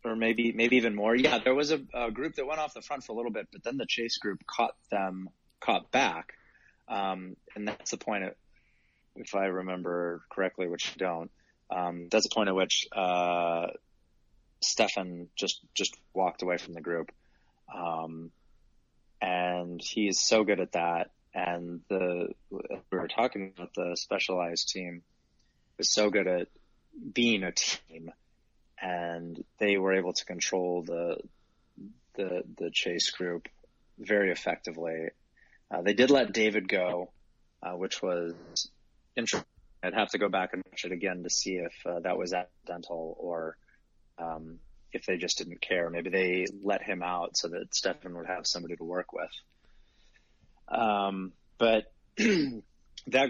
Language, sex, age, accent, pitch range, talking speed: English, male, 20-39, American, 85-105 Hz, 160 wpm